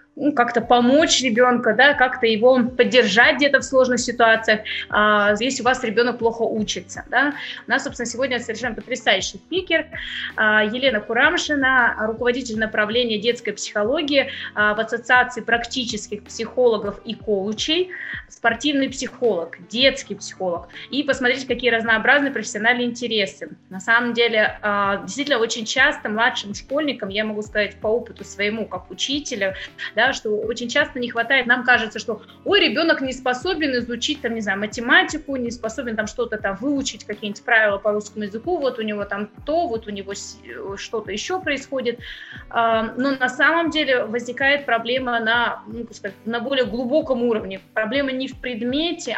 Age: 20-39